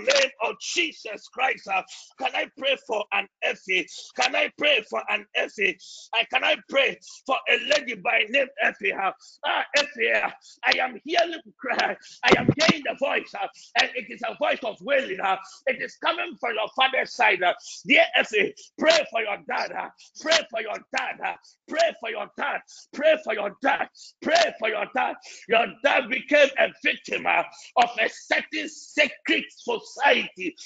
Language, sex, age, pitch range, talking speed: English, male, 50-69, 245-325 Hz, 185 wpm